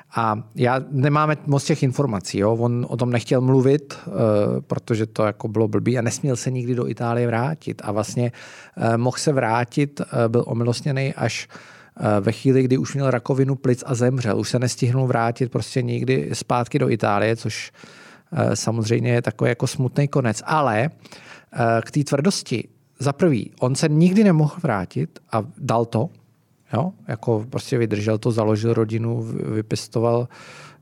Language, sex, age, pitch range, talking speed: Czech, male, 40-59, 115-140 Hz, 155 wpm